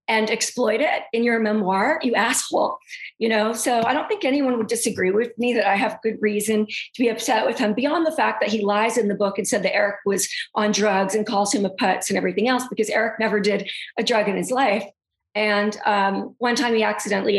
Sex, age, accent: female, 40-59, American